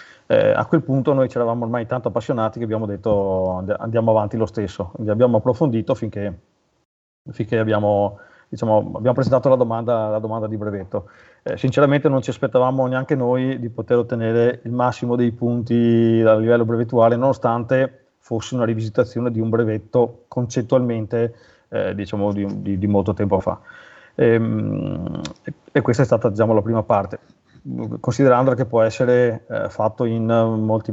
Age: 30-49